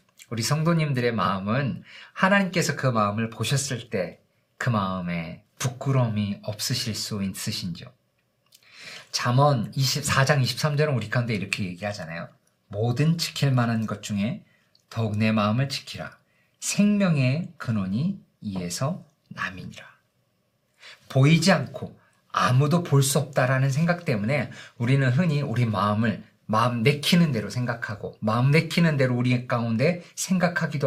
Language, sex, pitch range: Korean, male, 110-155 Hz